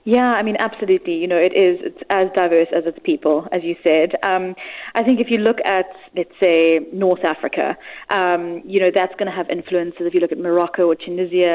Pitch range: 175-215 Hz